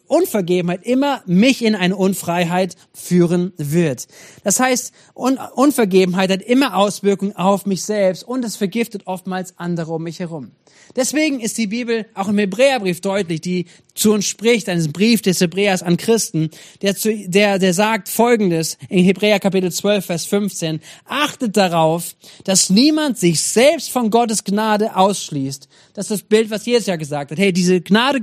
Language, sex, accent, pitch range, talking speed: German, male, German, 175-220 Hz, 165 wpm